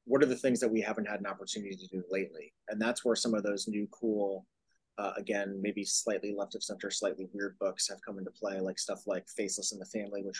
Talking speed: 250 wpm